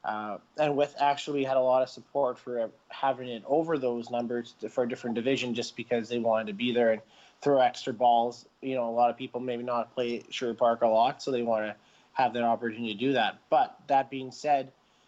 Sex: male